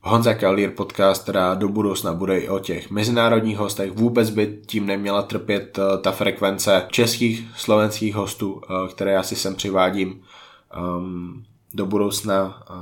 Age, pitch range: 20-39, 95-105 Hz